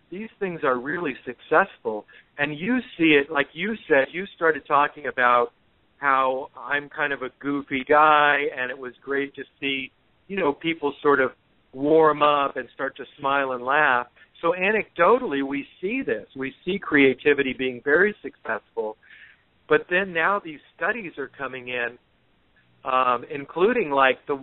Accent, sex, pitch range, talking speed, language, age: American, male, 130-160 Hz, 160 wpm, English, 50-69